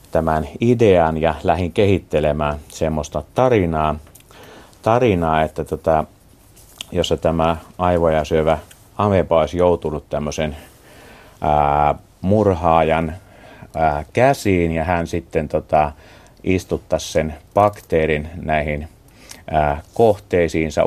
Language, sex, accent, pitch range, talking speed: Finnish, male, native, 75-90 Hz, 90 wpm